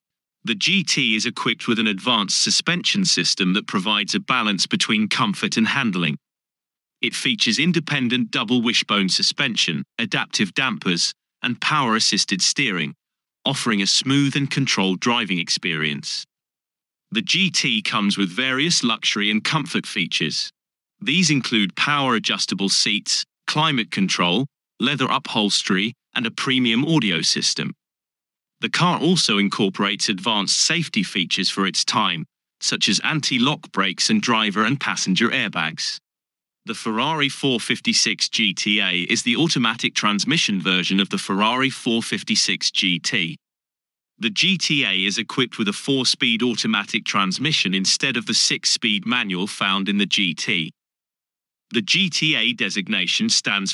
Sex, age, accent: male, 30-49, British